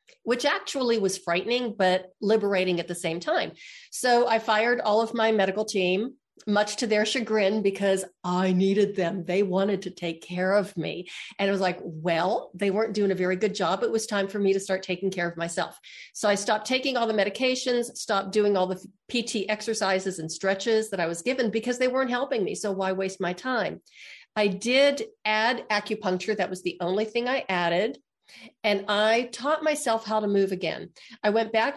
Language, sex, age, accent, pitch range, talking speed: English, female, 40-59, American, 185-230 Hz, 200 wpm